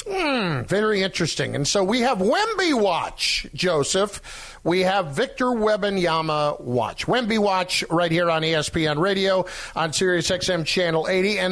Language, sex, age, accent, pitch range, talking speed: English, male, 50-69, American, 155-220 Hz, 145 wpm